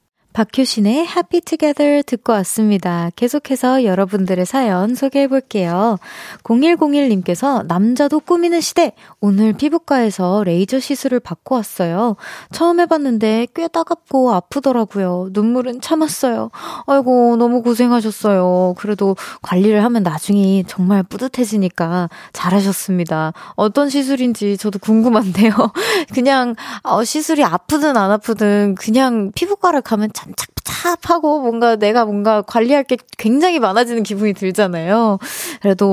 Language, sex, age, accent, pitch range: Korean, female, 20-39, native, 195-275 Hz